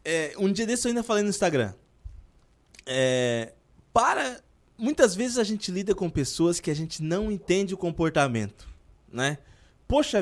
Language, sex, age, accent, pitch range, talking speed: Portuguese, male, 20-39, Brazilian, 145-230 Hz, 160 wpm